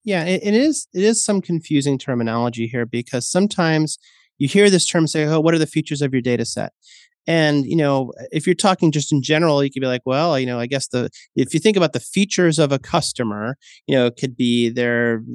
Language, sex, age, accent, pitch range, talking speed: English, male, 30-49, American, 125-175 Hz, 230 wpm